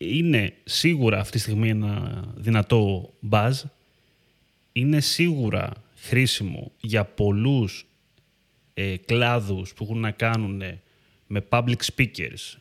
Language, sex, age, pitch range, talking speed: Greek, male, 30-49, 105-135 Hz, 100 wpm